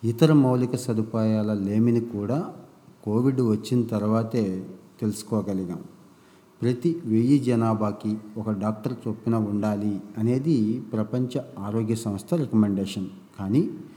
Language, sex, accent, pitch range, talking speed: Telugu, male, native, 105-120 Hz, 95 wpm